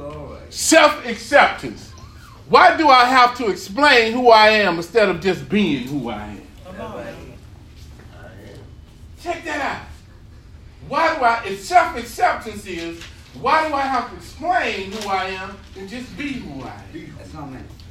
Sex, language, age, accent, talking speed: male, English, 40-59, American, 135 wpm